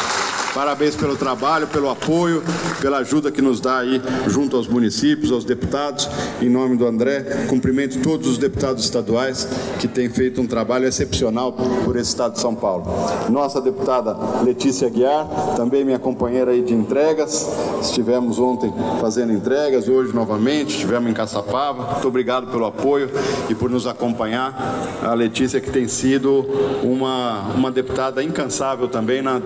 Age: 50-69